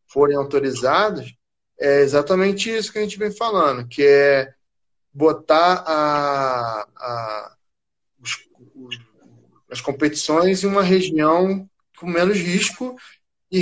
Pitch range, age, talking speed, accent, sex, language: 140-195 Hz, 20-39, 95 wpm, Brazilian, male, Portuguese